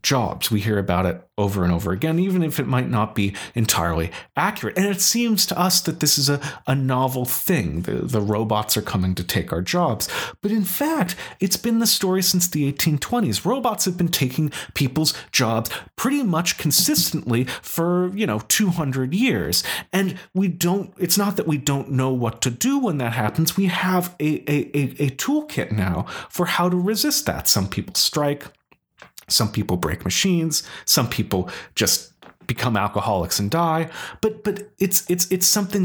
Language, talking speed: English, 185 wpm